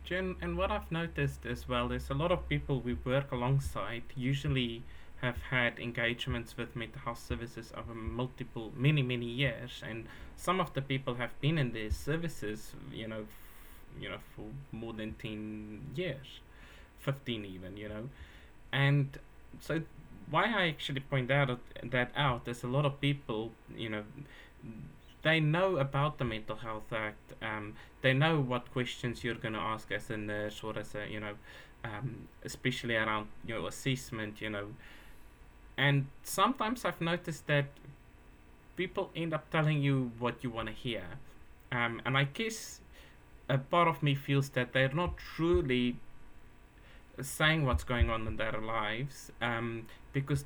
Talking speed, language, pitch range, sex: 160 wpm, English, 110-140 Hz, male